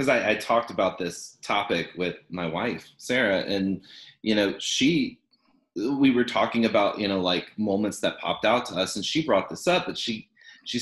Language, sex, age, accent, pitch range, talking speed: English, male, 30-49, American, 105-135 Hz, 195 wpm